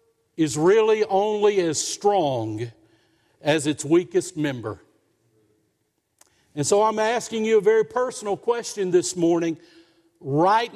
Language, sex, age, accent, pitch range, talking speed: English, male, 50-69, American, 155-210 Hz, 115 wpm